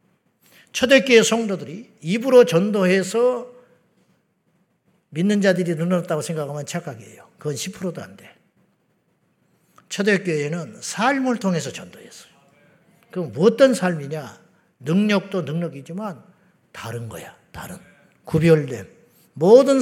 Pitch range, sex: 160-210 Hz, male